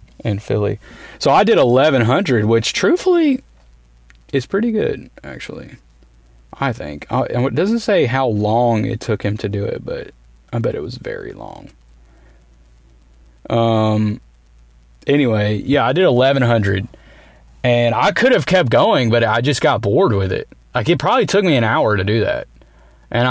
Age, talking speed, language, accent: 30-49, 160 wpm, English, American